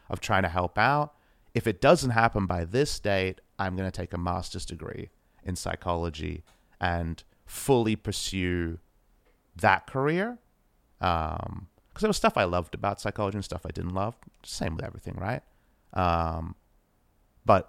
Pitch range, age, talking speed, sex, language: 90-110 Hz, 30-49, 155 wpm, male, English